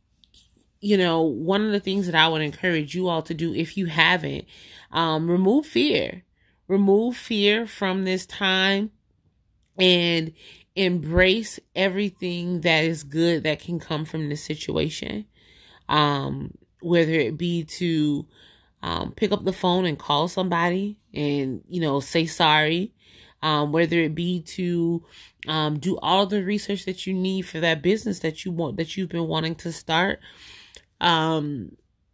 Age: 30-49